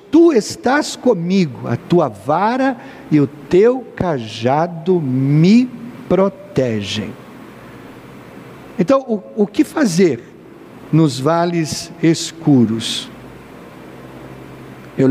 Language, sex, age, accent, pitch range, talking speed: Portuguese, male, 60-79, Brazilian, 130-195 Hz, 85 wpm